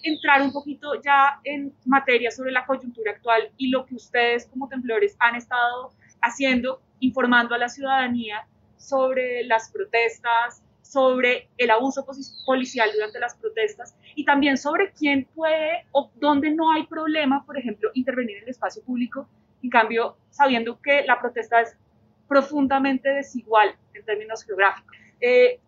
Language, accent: English, Colombian